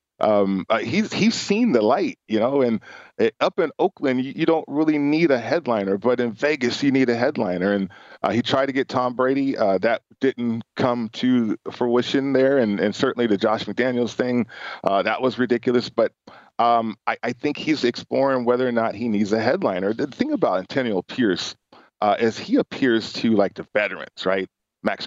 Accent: American